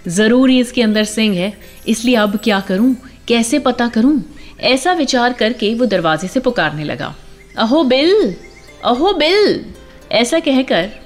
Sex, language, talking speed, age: female, Hindi, 140 wpm, 30-49